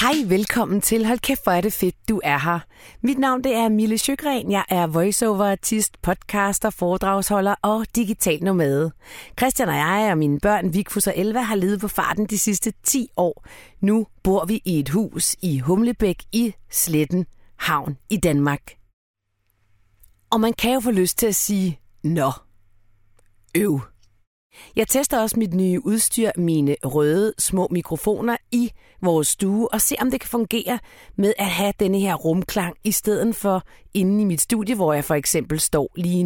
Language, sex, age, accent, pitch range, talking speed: Danish, female, 40-59, native, 160-220 Hz, 170 wpm